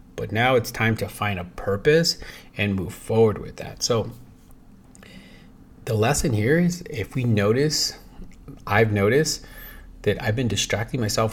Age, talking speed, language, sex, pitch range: 30-49, 150 wpm, English, male, 100-115 Hz